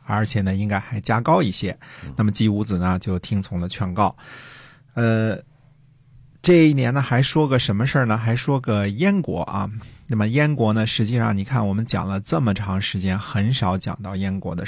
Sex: male